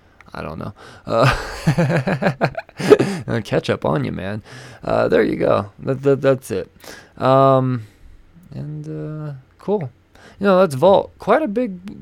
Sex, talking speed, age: male, 140 wpm, 20-39